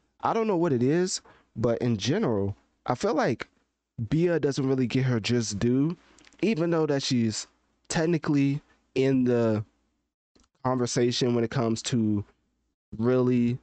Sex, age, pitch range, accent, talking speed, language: male, 20-39, 105-125 Hz, American, 140 wpm, English